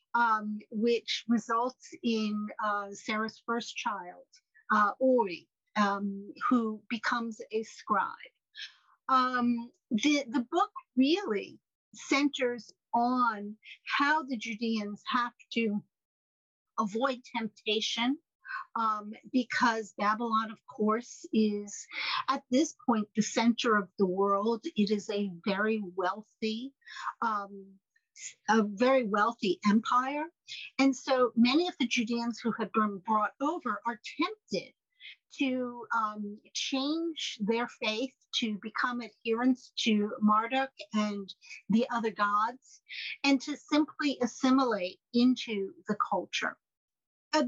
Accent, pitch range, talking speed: American, 210-265 Hz, 110 wpm